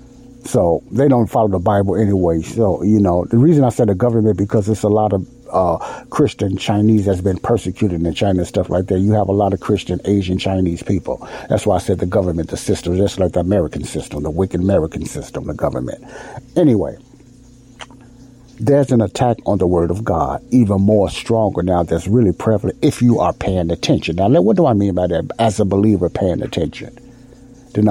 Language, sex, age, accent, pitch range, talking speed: English, male, 60-79, American, 95-125 Hz, 205 wpm